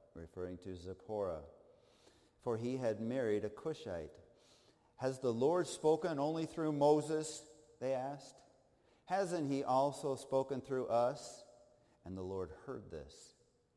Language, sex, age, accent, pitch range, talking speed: English, male, 50-69, American, 95-125 Hz, 125 wpm